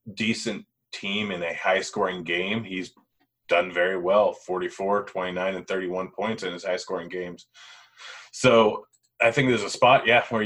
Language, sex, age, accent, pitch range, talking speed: English, male, 30-49, American, 90-120 Hz, 165 wpm